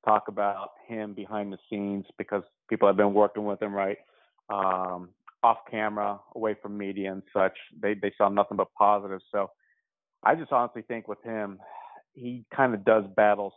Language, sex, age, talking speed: English, male, 30-49, 175 wpm